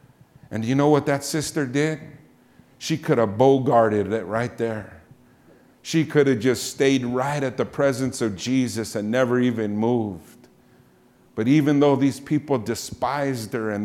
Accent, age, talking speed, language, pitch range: American, 50-69, 160 wpm, English, 120-170 Hz